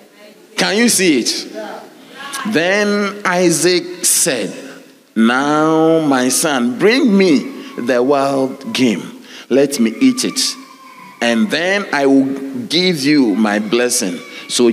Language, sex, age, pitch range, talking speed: English, male, 40-59, 125-190 Hz, 115 wpm